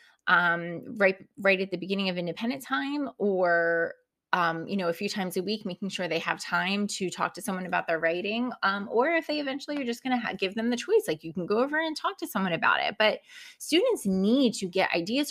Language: English